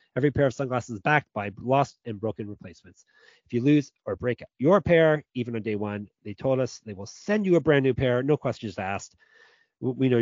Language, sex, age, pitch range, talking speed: English, male, 30-49, 115-150 Hz, 215 wpm